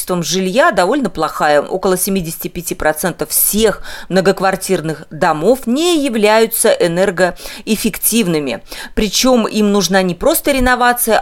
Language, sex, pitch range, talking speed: Russian, female, 180-235 Hz, 95 wpm